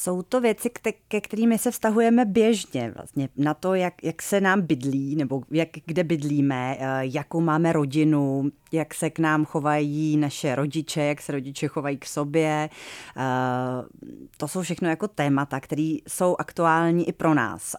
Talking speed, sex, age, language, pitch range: 150 wpm, female, 30-49, Czech, 140-170 Hz